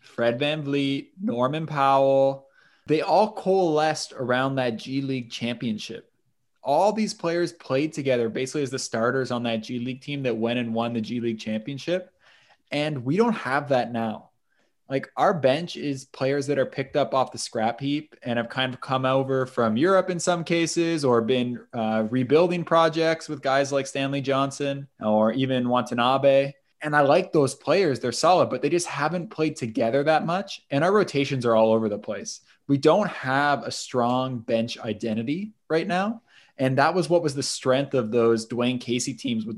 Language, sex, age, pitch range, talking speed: English, male, 20-39, 125-150 Hz, 185 wpm